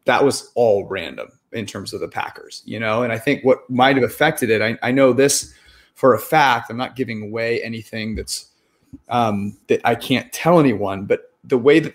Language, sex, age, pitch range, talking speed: English, male, 30-49, 110-135 Hz, 205 wpm